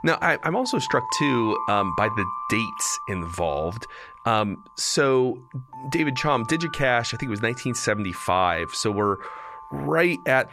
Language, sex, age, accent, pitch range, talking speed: English, male, 30-49, American, 100-130 Hz, 140 wpm